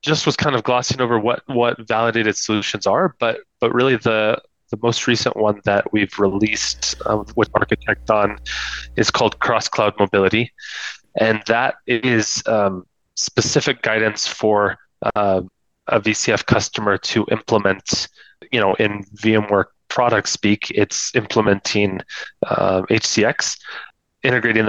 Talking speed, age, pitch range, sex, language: 135 wpm, 20-39, 100-115 Hz, male, English